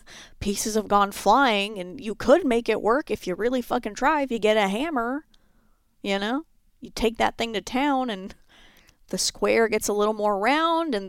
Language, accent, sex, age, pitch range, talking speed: English, American, female, 30-49, 195-255 Hz, 200 wpm